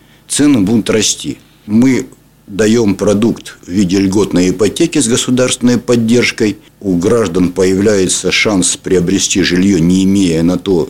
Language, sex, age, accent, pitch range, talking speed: Russian, male, 60-79, native, 95-125 Hz, 125 wpm